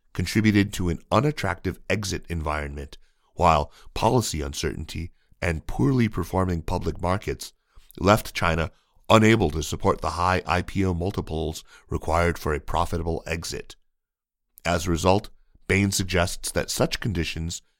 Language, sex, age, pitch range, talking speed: English, male, 40-59, 85-100 Hz, 120 wpm